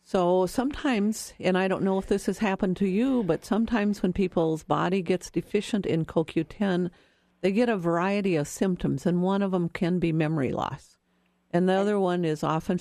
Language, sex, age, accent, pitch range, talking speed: English, female, 50-69, American, 155-190 Hz, 190 wpm